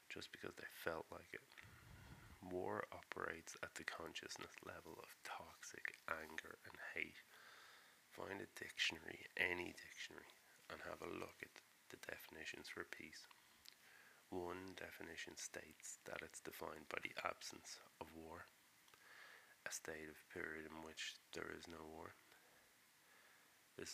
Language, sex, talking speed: English, male, 135 wpm